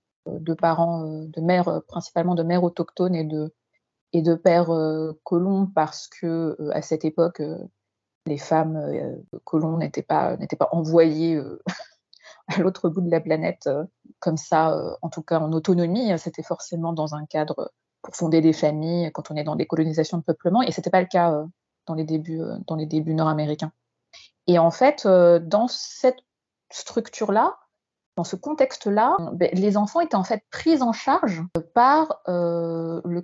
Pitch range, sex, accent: 160-200 Hz, female, French